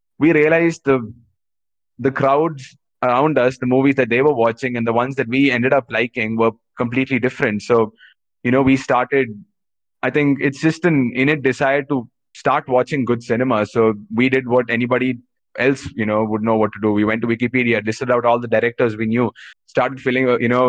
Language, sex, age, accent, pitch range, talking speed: English, male, 20-39, Indian, 115-130 Hz, 200 wpm